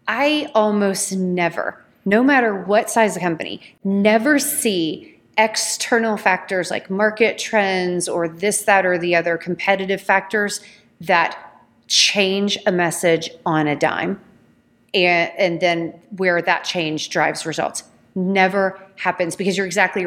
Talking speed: 130 wpm